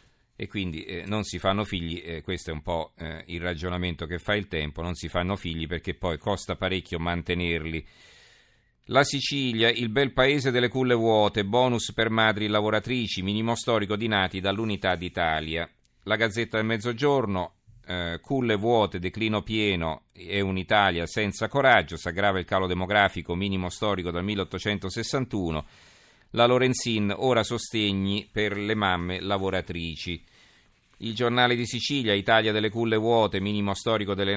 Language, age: Italian, 50-69